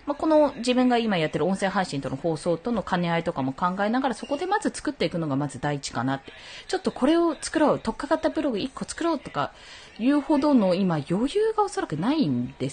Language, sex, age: Japanese, female, 20-39